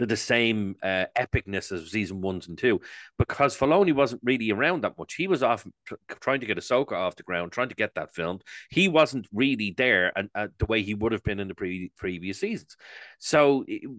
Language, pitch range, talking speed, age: English, 95-140 Hz, 220 wpm, 30-49